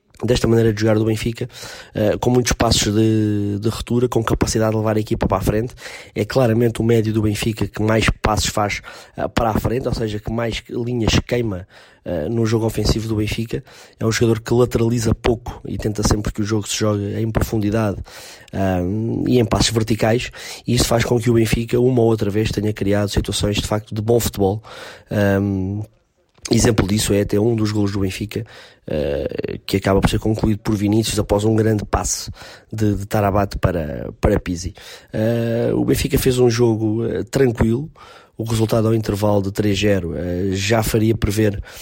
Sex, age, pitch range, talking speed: male, 20-39, 105-115 Hz, 185 wpm